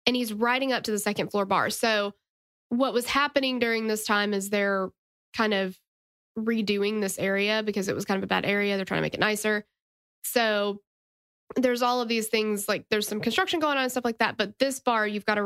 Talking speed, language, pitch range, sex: 230 wpm, English, 210-250 Hz, female